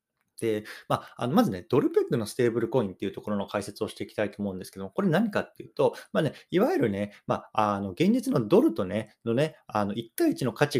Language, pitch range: Japanese, 105-165 Hz